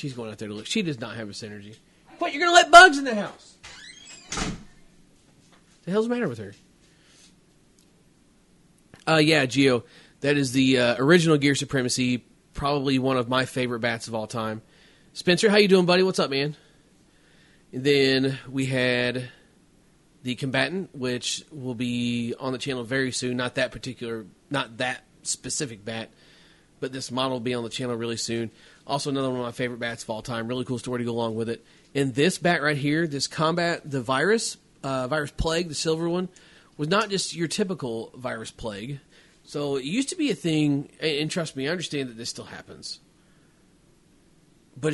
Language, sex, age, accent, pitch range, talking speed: English, male, 30-49, American, 125-160 Hz, 190 wpm